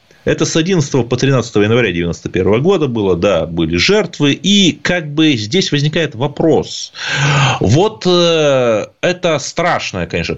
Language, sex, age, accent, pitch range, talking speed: Russian, male, 30-49, native, 115-175 Hz, 125 wpm